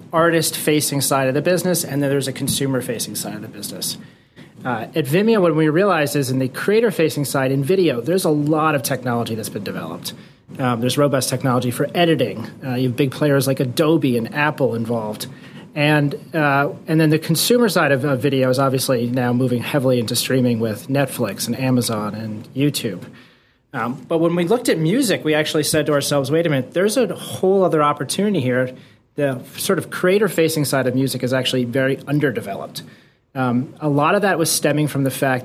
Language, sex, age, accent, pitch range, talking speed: English, male, 30-49, American, 125-155 Hz, 195 wpm